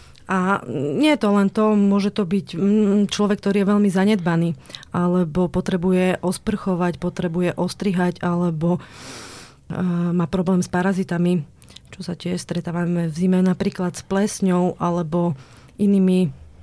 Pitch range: 180-200 Hz